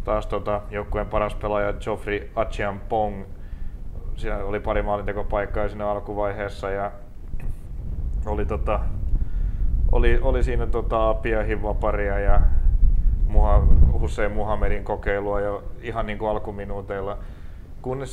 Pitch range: 95-110 Hz